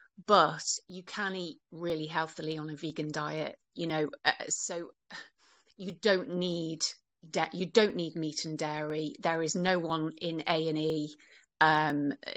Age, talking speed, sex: 30-49, 160 wpm, female